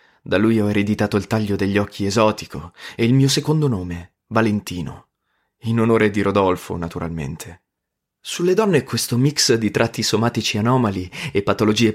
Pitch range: 100-130 Hz